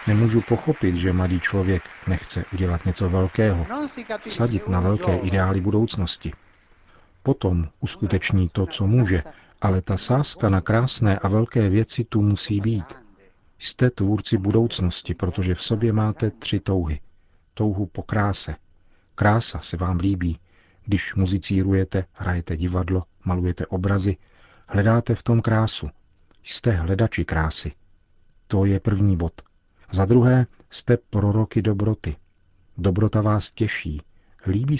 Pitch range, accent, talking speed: 90-110 Hz, native, 125 wpm